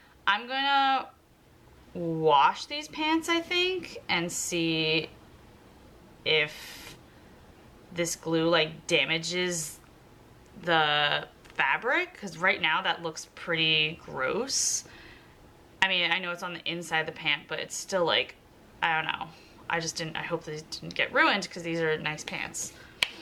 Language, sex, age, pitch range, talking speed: English, female, 20-39, 165-235 Hz, 140 wpm